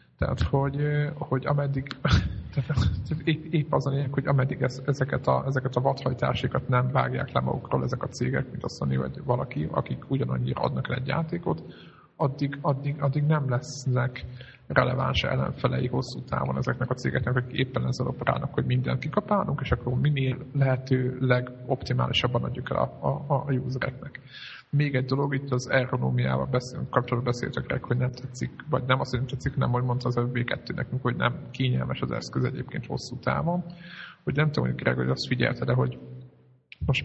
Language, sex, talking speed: Hungarian, male, 170 wpm